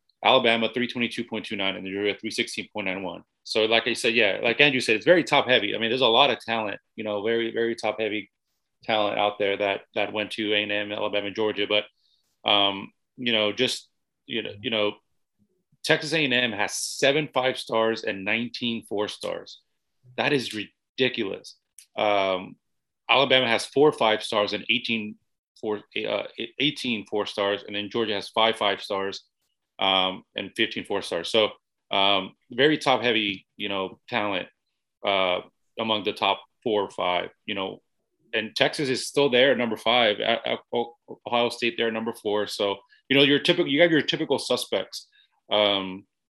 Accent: American